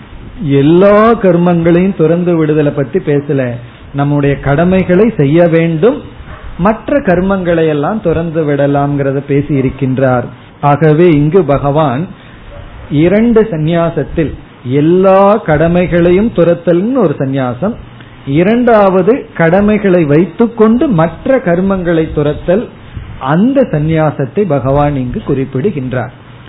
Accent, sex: native, male